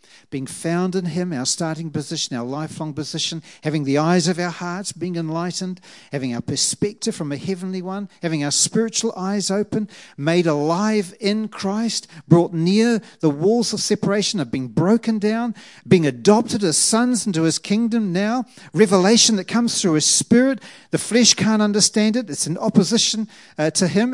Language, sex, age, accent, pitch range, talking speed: English, male, 50-69, Australian, 175-265 Hz, 170 wpm